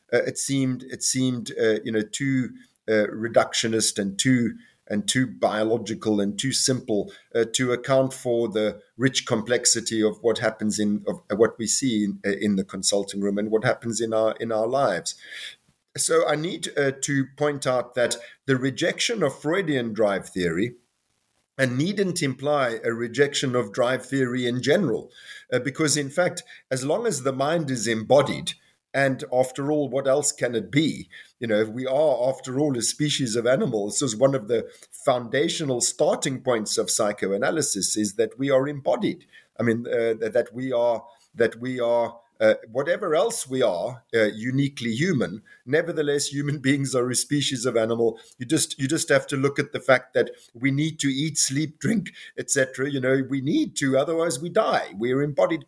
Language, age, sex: English, 50-69, male